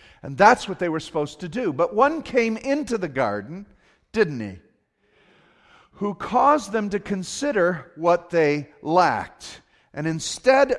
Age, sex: 50-69, male